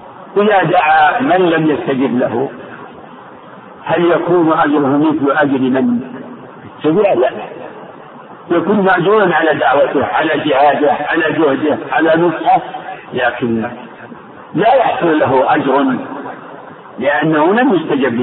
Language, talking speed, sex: Arabic, 120 wpm, male